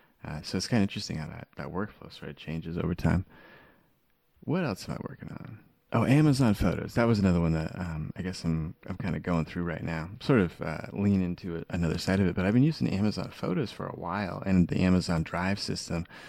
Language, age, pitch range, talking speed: English, 20-39, 80-95 Hz, 235 wpm